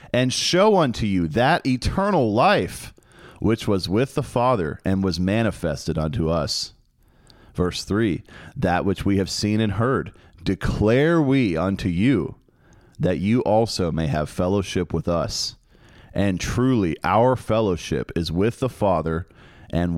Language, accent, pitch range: English, American, 95-125 Hz